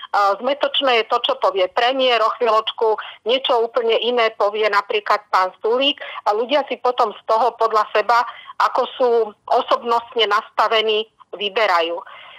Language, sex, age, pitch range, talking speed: Slovak, female, 40-59, 220-255 Hz, 135 wpm